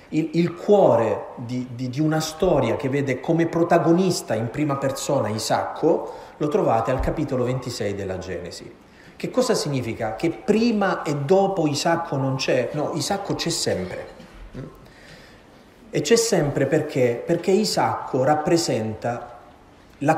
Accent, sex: native, male